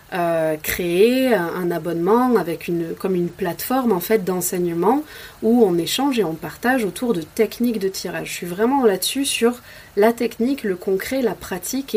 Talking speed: 175 wpm